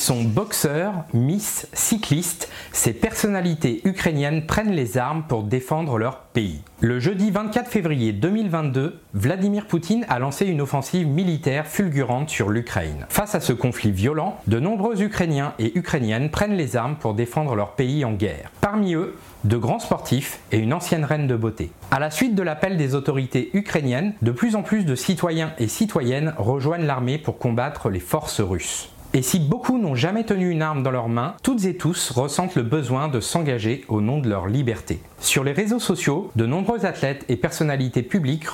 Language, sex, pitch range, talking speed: French, male, 120-180 Hz, 180 wpm